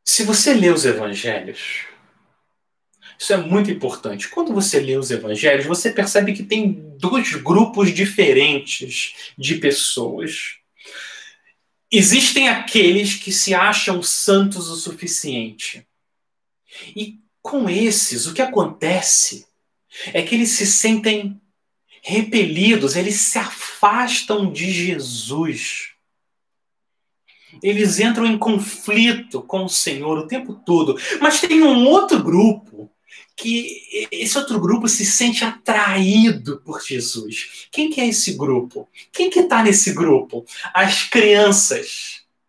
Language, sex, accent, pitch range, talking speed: Portuguese, male, Brazilian, 175-220 Hz, 120 wpm